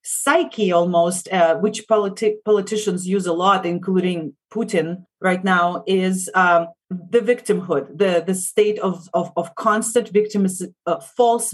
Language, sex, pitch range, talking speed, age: English, female, 170-205 Hz, 140 wpm, 30-49